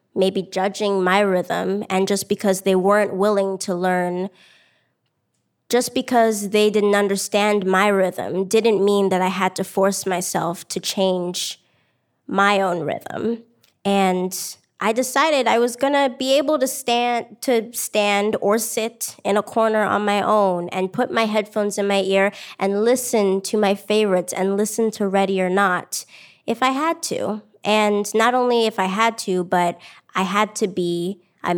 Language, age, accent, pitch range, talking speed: English, 20-39, American, 195-230 Hz, 165 wpm